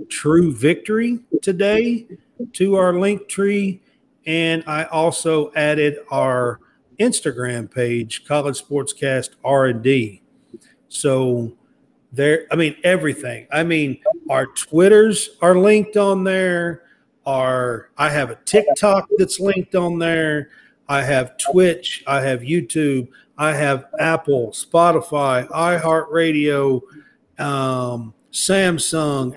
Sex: male